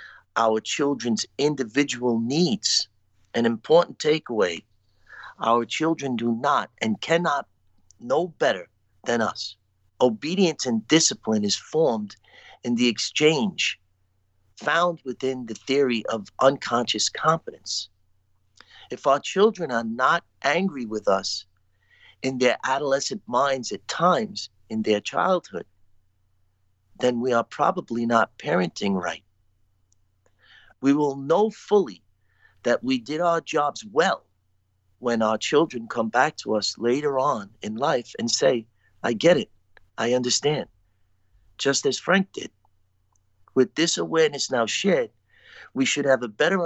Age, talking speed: 50-69, 125 wpm